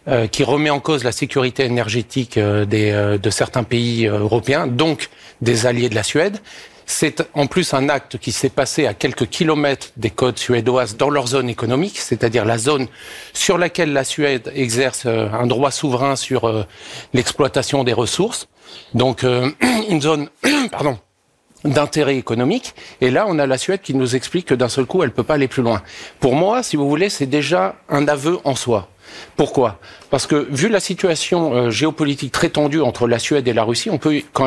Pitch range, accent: 125-150 Hz, French